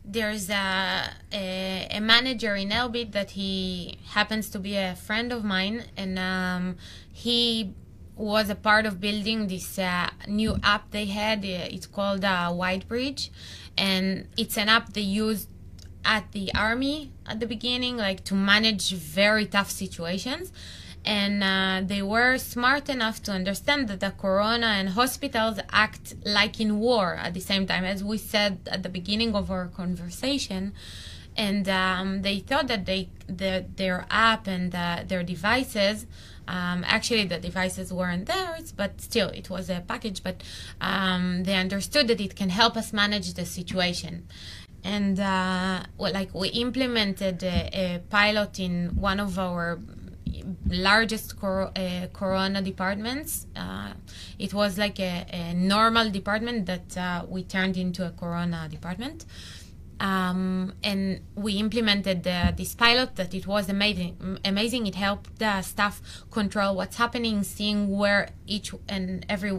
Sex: female